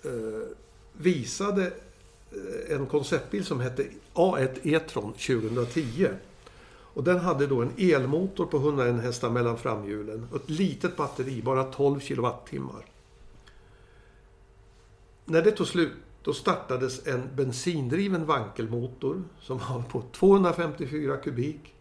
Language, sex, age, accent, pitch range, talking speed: Swedish, male, 60-79, native, 115-160 Hz, 110 wpm